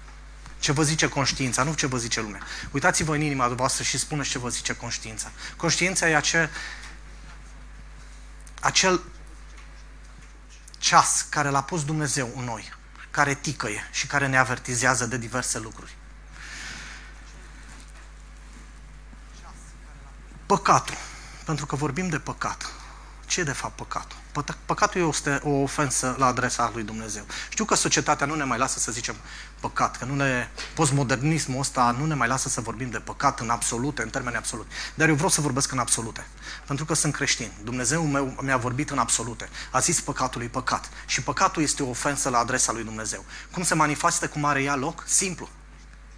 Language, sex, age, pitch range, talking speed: Romanian, male, 30-49, 120-150 Hz, 160 wpm